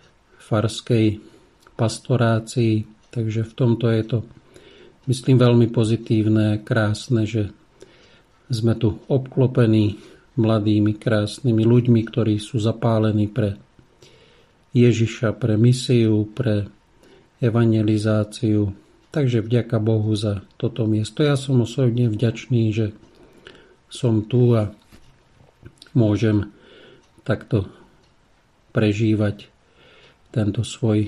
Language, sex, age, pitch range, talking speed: Slovak, male, 50-69, 105-115 Hz, 90 wpm